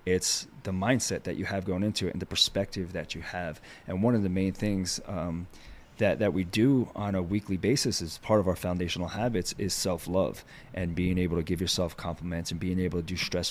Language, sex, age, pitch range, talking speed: English, male, 30-49, 90-105 Hz, 225 wpm